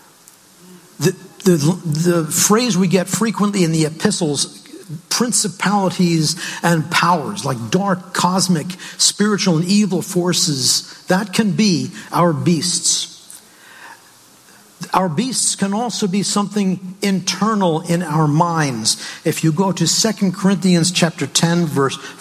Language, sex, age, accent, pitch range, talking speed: English, male, 50-69, American, 160-185 Hz, 115 wpm